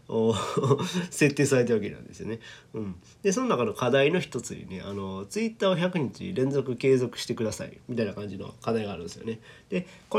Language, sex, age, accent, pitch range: Japanese, male, 40-59, native, 110-170 Hz